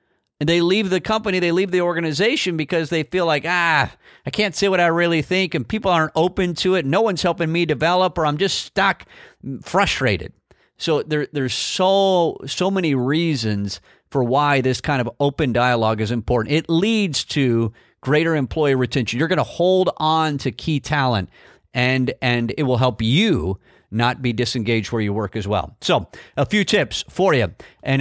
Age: 40-59